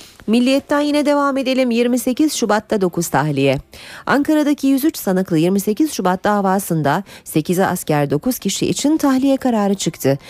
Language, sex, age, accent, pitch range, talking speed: Turkish, female, 40-59, native, 165-225 Hz, 130 wpm